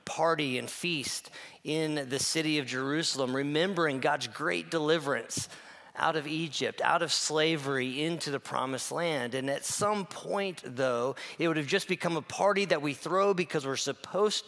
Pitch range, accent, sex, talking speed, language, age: 140-180 Hz, American, male, 165 wpm, English, 40-59